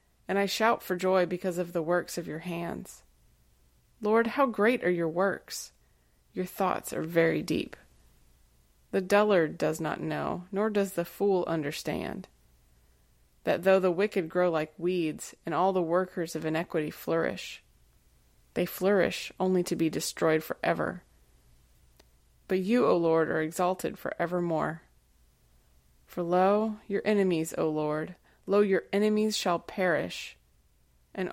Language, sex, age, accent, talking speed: English, female, 30-49, American, 150 wpm